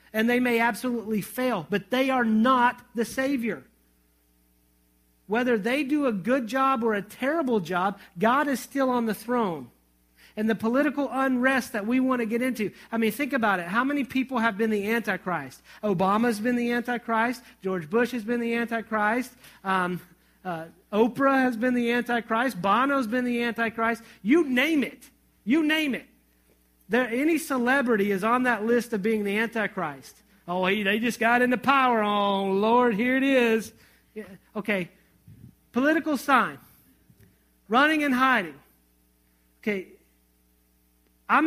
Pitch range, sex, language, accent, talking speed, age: 185-245 Hz, male, English, American, 150 wpm, 40-59